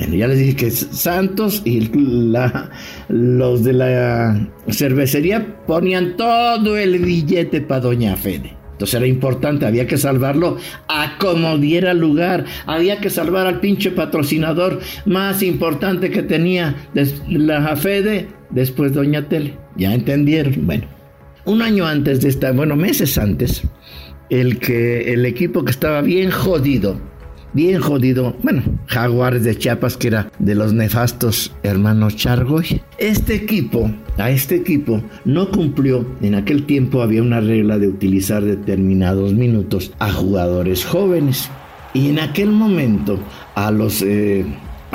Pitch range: 105-160 Hz